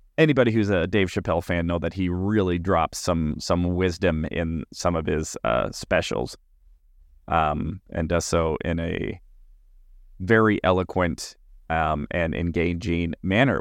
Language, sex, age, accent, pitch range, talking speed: English, male, 20-39, American, 80-100 Hz, 140 wpm